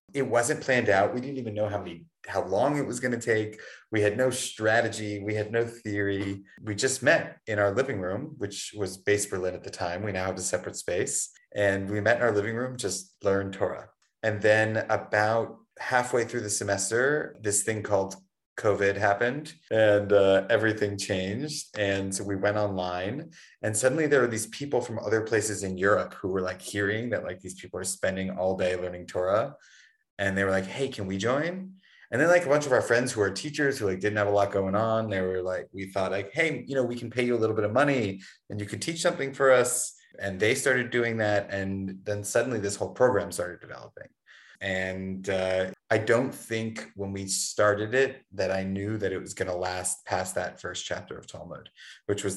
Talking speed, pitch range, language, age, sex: 220 wpm, 95-120 Hz, English, 30-49, male